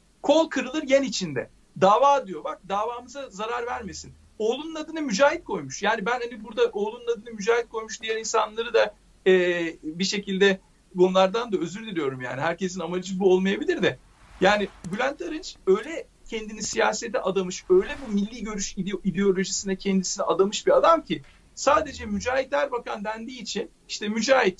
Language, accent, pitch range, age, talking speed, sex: Turkish, native, 190-270 Hz, 60-79, 150 wpm, male